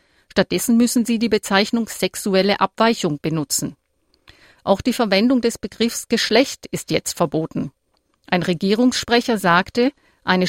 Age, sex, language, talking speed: 50-69, female, German, 120 wpm